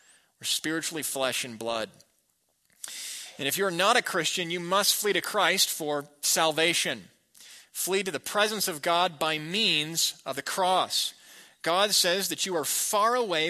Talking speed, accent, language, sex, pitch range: 155 wpm, American, English, male, 140-190 Hz